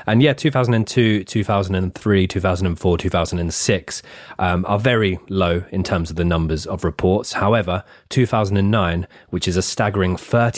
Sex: male